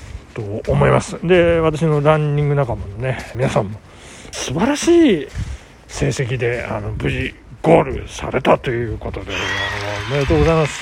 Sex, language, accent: male, Japanese, native